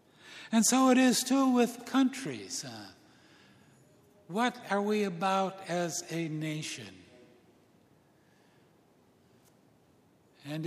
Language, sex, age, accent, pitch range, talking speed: English, male, 60-79, American, 140-175 Hz, 85 wpm